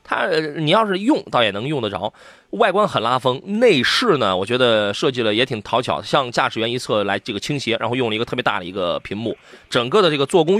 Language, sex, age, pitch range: Chinese, male, 20-39, 125-170 Hz